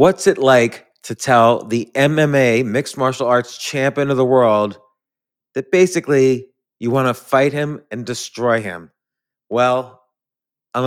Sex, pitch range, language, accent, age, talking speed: male, 115-140 Hz, English, American, 30-49, 140 wpm